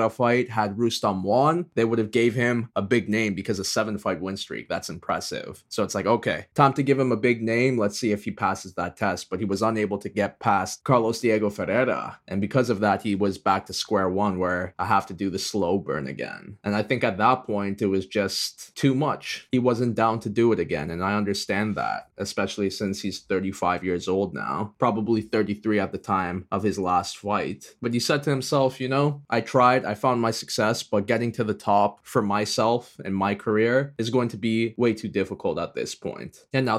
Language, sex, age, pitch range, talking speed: English, male, 20-39, 100-125 Hz, 230 wpm